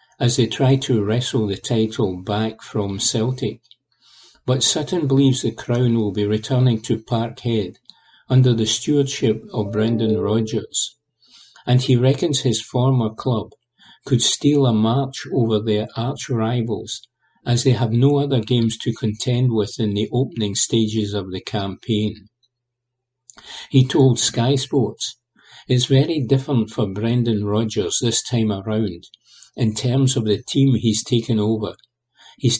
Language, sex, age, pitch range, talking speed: English, male, 50-69, 110-130 Hz, 140 wpm